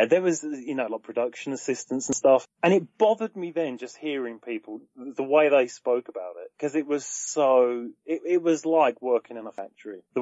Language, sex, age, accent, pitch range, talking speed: English, male, 30-49, British, 120-190 Hz, 210 wpm